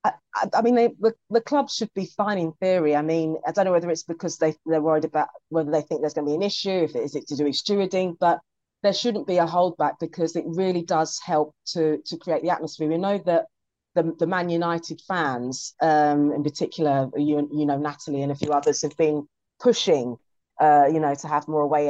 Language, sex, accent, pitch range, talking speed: English, female, British, 150-175 Hz, 235 wpm